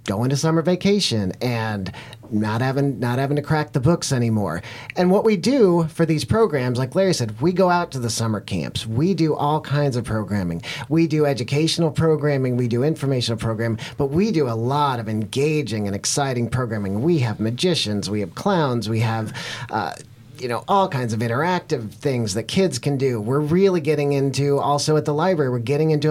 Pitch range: 115-145 Hz